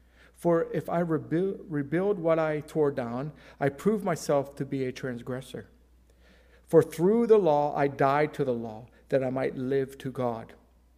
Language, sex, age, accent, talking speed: English, male, 50-69, American, 165 wpm